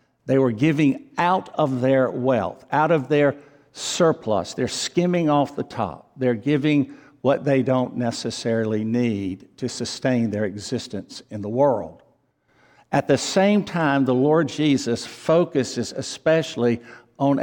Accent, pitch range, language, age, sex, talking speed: American, 120-150 Hz, English, 60-79, male, 140 wpm